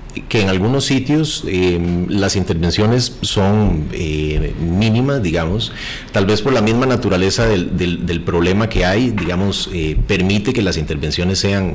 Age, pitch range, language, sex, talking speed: 30-49, 90-120 Hz, Spanish, male, 150 wpm